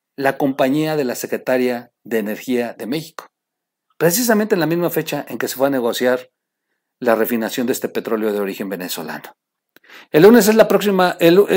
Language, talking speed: Spanish, 175 wpm